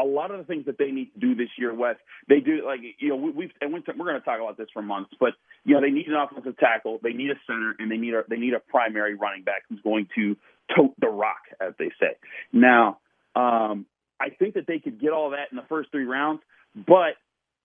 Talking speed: 255 wpm